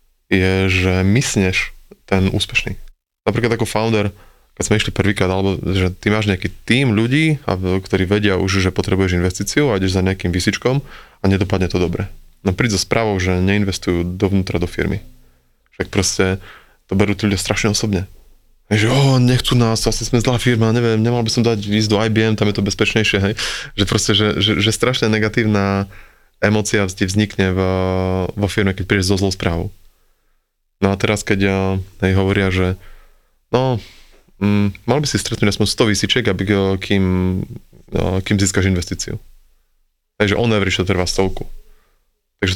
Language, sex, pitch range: Slovak, male, 95-110 Hz